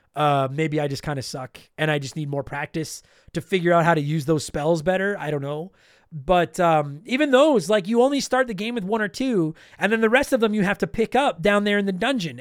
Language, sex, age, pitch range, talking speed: English, male, 30-49, 175-265 Hz, 265 wpm